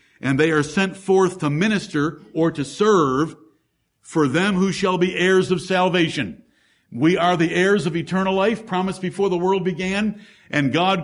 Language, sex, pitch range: English, male, 165-205 Hz